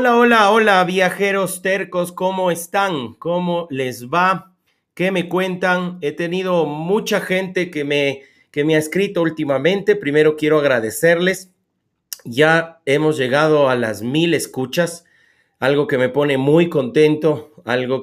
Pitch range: 135-175 Hz